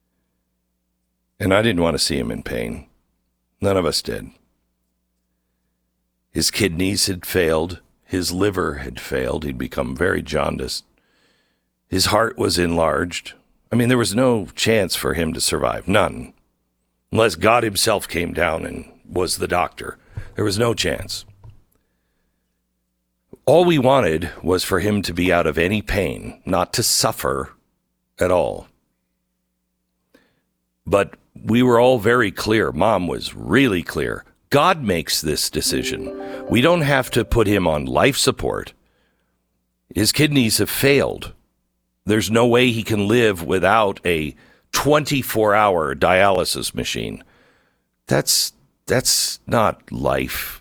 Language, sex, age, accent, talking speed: English, male, 60-79, American, 135 wpm